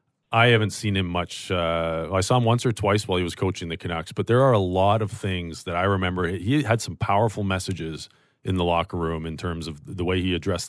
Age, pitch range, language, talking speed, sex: 40-59, 90-105 Hz, English, 245 wpm, male